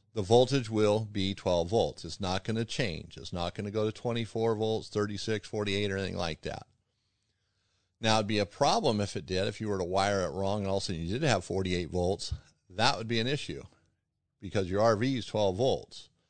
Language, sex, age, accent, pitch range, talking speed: English, male, 40-59, American, 100-120 Hz, 230 wpm